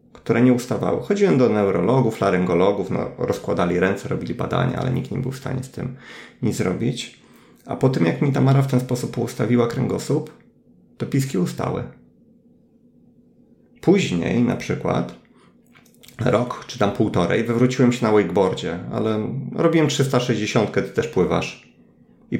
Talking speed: 145 wpm